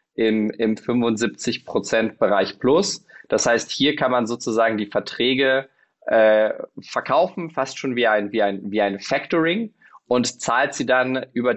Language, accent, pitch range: German, German, 110-130 Hz